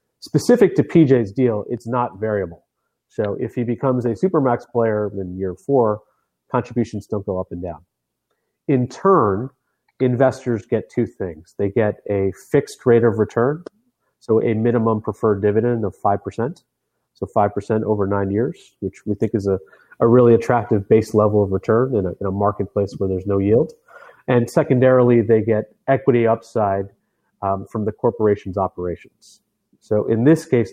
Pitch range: 100-125 Hz